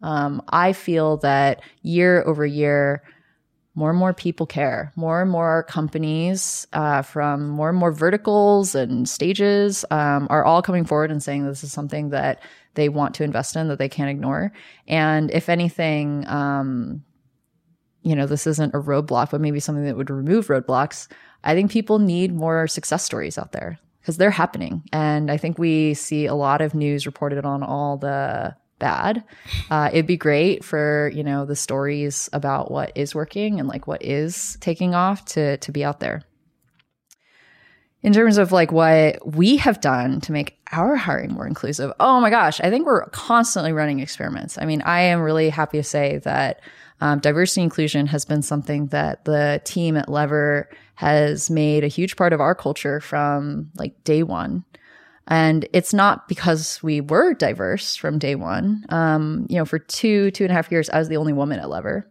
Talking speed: 185 wpm